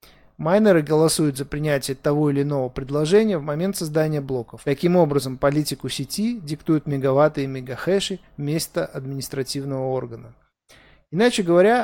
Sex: male